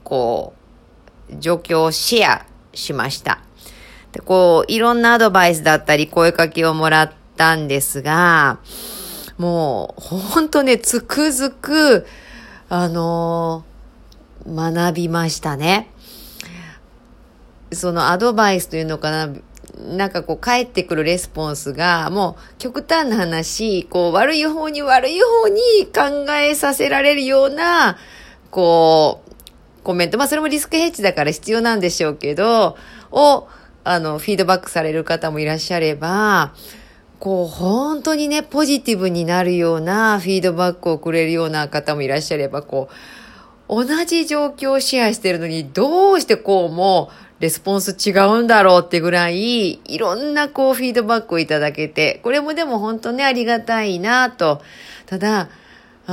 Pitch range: 165-255 Hz